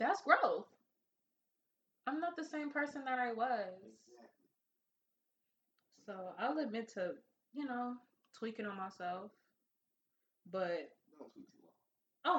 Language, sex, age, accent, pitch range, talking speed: English, female, 20-39, American, 195-245 Hz, 100 wpm